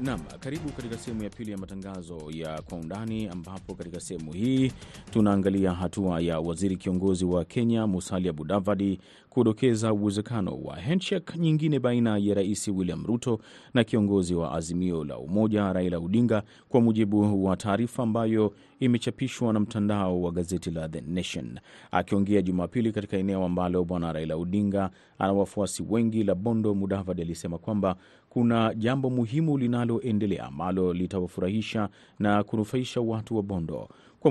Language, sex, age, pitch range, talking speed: Swahili, male, 30-49, 90-115 Hz, 145 wpm